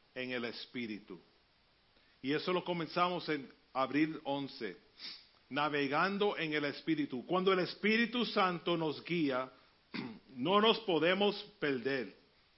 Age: 40-59